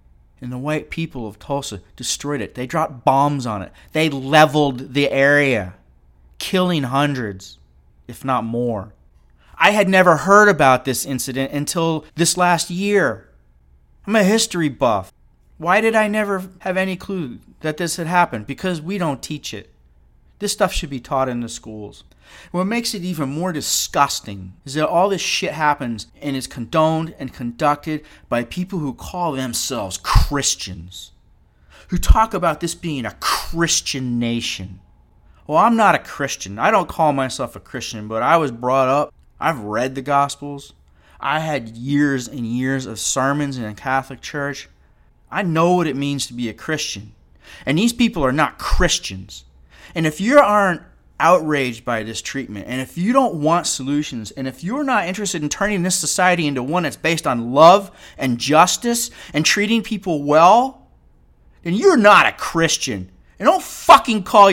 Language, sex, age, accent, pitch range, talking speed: English, male, 30-49, American, 115-170 Hz, 170 wpm